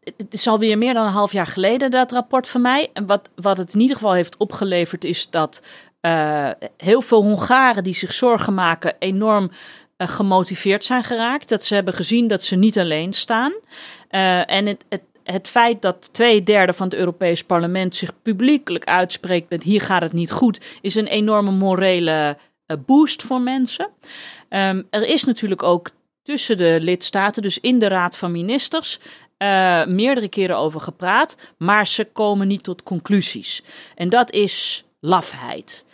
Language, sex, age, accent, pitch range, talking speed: Dutch, female, 40-59, Dutch, 180-235 Hz, 170 wpm